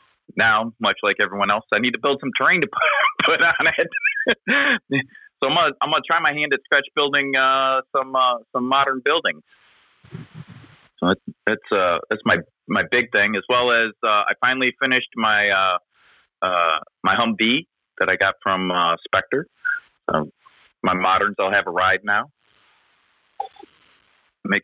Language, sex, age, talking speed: English, male, 30-49, 165 wpm